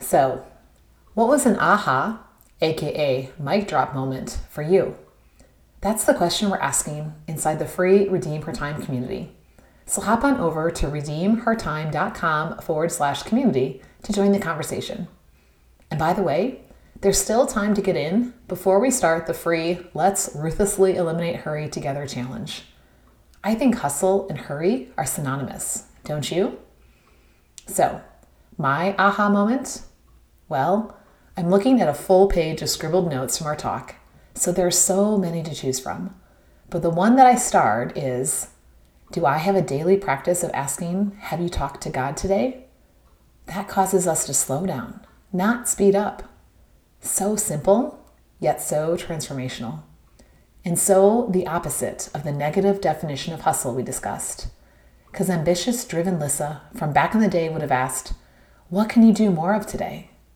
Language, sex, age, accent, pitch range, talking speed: English, female, 30-49, American, 145-195 Hz, 155 wpm